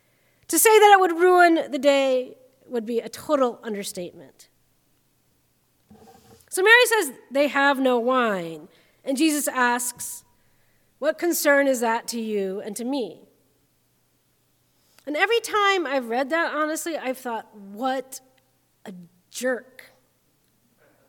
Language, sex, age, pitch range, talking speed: English, female, 40-59, 245-365 Hz, 125 wpm